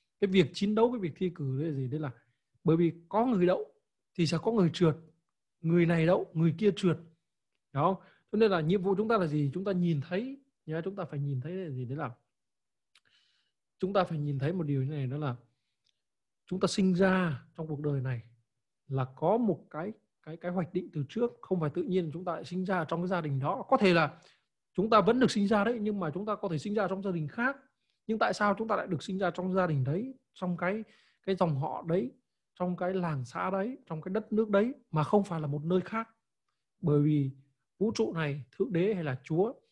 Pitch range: 150-195 Hz